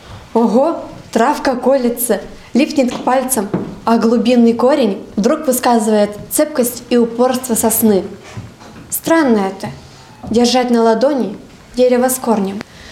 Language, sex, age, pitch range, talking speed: Russian, female, 20-39, 210-265 Hz, 105 wpm